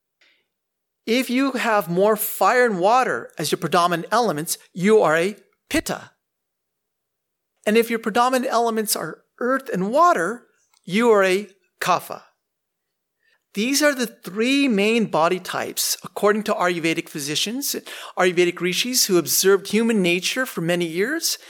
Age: 50-69